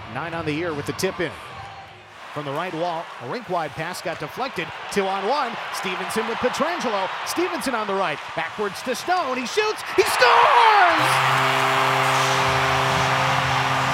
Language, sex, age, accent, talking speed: English, male, 40-59, American, 150 wpm